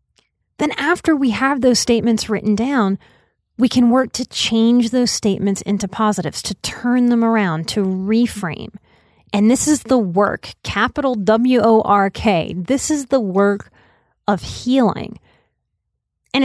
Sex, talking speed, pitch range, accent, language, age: female, 135 wpm, 200-260 Hz, American, English, 30-49